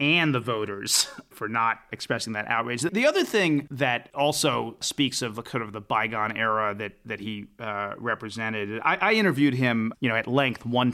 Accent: American